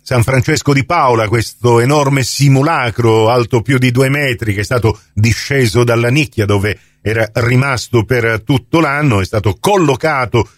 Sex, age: male, 40-59